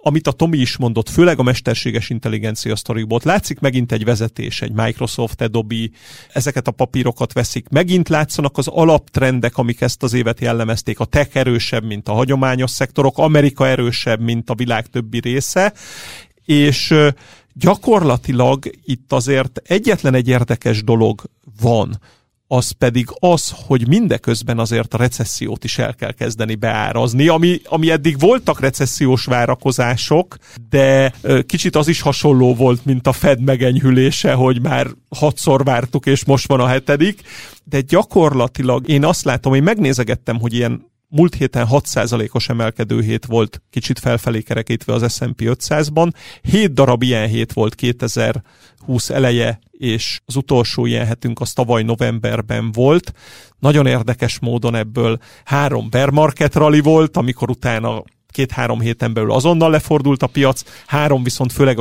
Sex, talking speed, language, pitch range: male, 145 wpm, Hungarian, 120-140 Hz